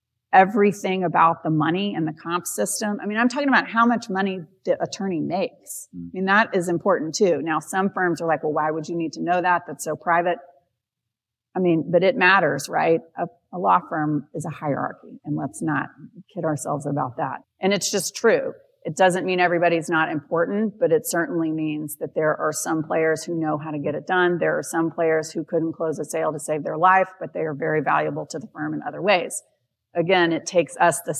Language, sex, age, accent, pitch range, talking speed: English, female, 40-59, American, 155-180 Hz, 225 wpm